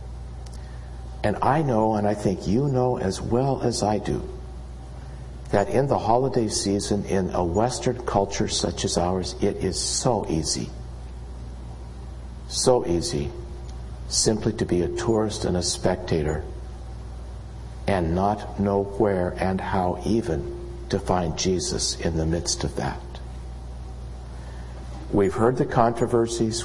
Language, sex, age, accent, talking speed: English, male, 60-79, American, 130 wpm